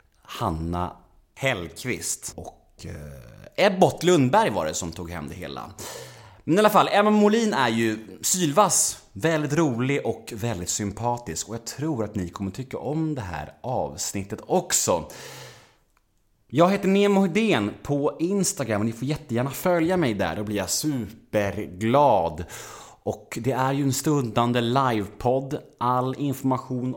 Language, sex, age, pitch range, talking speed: Swedish, male, 30-49, 95-135 Hz, 140 wpm